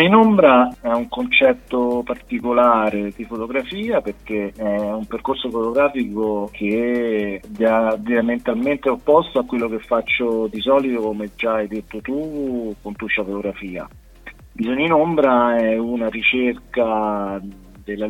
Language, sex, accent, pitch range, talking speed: Italian, male, native, 100-130 Hz, 125 wpm